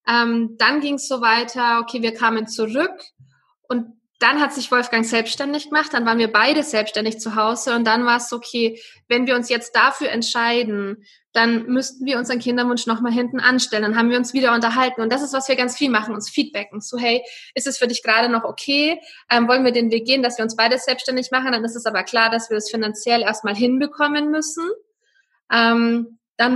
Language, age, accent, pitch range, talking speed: German, 20-39, German, 230-275 Hz, 215 wpm